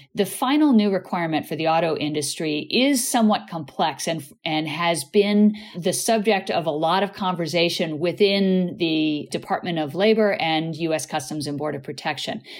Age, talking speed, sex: 50-69, 160 wpm, female